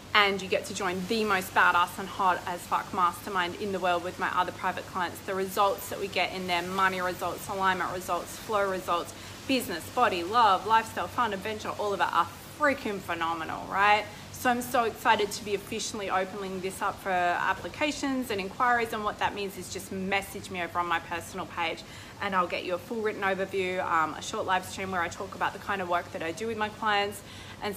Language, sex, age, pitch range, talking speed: English, female, 20-39, 190-225 Hz, 220 wpm